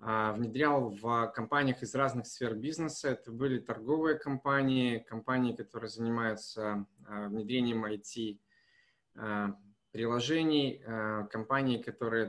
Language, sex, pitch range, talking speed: Russian, male, 110-140 Hz, 90 wpm